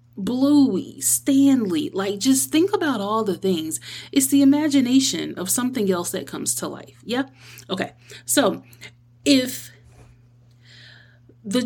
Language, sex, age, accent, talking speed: English, female, 30-49, American, 125 wpm